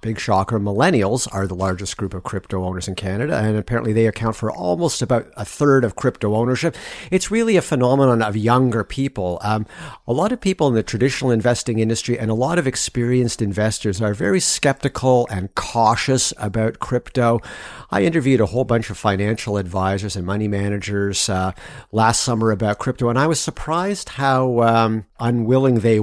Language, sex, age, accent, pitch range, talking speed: English, male, 50-69, American, 105-130 Hz, 180 wpm